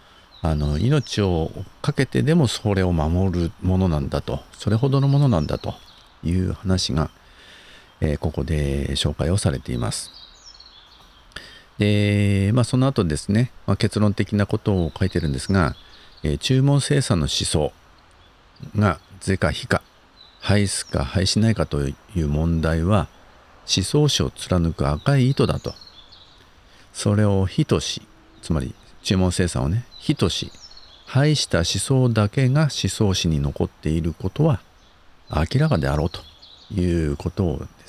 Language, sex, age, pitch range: Japanese, male, 50-69, 80-105 Hz